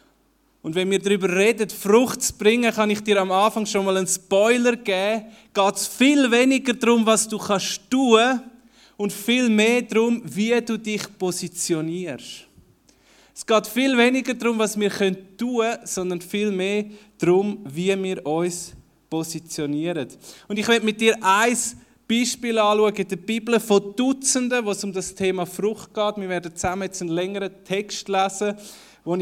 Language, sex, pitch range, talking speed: German, male, 175-215 Hz, 165 wpm